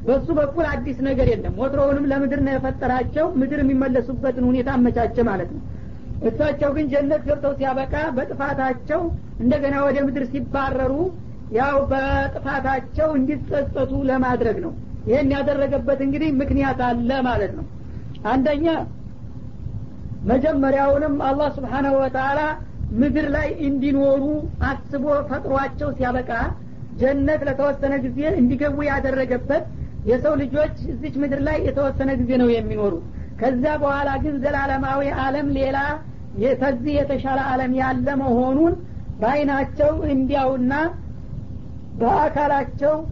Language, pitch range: Amharic, 265-290 Hz